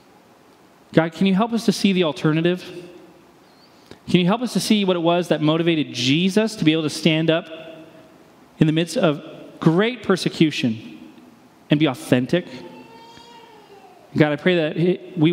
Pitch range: 155-210 Hz